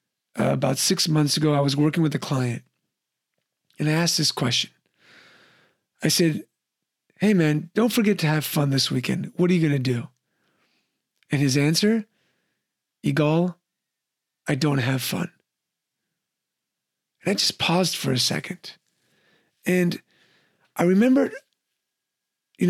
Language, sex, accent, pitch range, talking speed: English, male, American, 145-185 Hz, 135 wpm